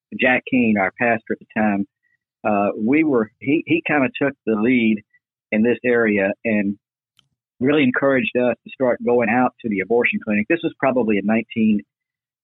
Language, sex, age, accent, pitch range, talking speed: English, male, 50-69, American, 110-140 Hz, 180 wpm